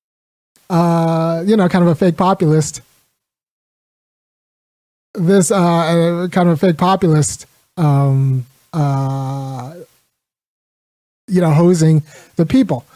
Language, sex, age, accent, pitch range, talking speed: English, male, 30-49, American, 140-175 Hz, 105 wpm